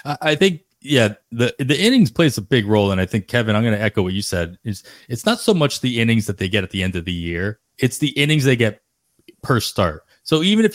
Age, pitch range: 30-49, 100-125 Hz